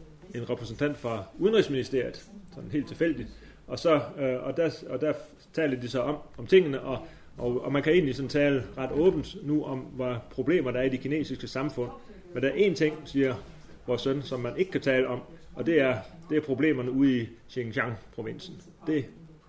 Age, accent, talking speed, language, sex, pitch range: 30-49, native, 200 wpm, Danish, male, 125-160 Hz